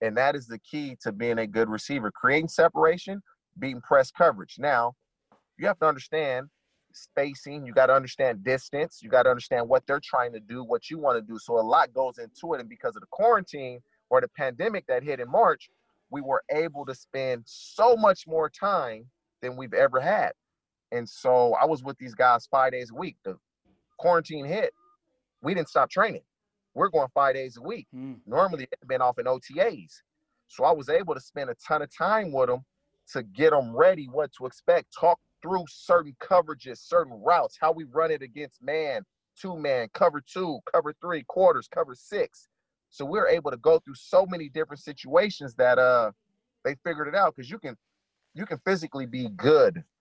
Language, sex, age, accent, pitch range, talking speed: English, male, 30-49, American, 130-175 Hz, 200 wpm